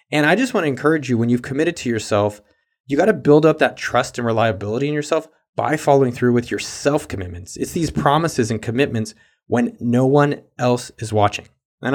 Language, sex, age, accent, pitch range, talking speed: English, male, 30-49, American, 115-145 Hz, 205 wpm